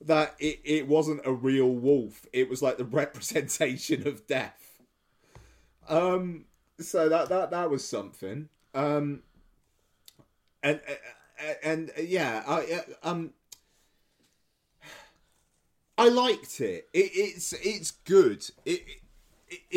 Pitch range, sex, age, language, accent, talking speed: 110-145 Hz, male, 30-49, English, British, 105 wpm